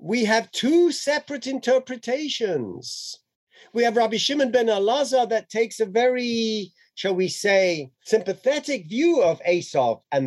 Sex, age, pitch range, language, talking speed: male, 50-69, 150-235 Hz, English, 135 wpm